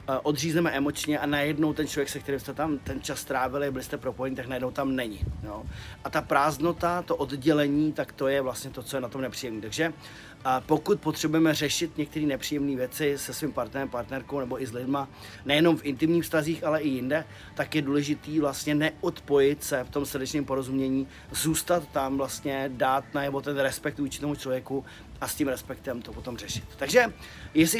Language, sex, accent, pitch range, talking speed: Czech, male, native, 135-155 Hz, 190 wpm